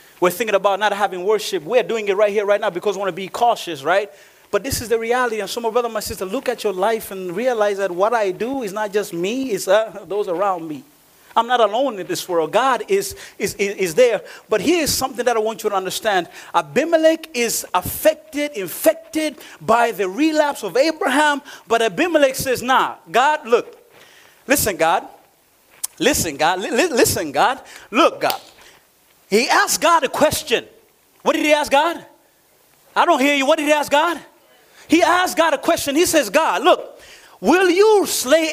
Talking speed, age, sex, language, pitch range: 190 wpm, 30-49, male, English, 225-340 Hz